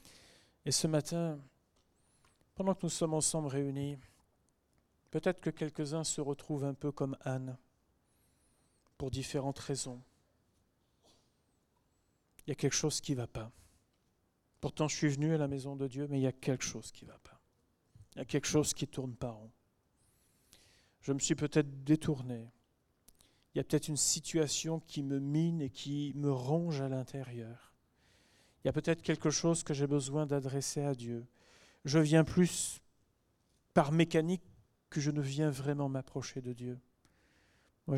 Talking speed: 165 wpm